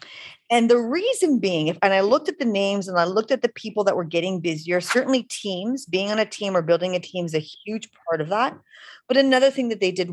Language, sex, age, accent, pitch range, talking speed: English, female, 30-49, American, 175-240 Hz, 250 wpm